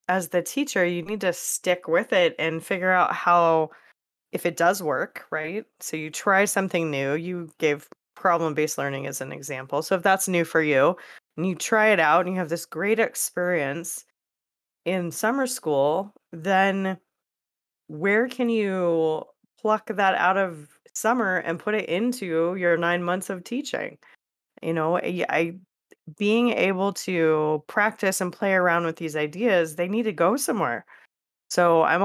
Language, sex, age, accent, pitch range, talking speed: English, female, 20-39, American, 160-195 Hz, 165 wpm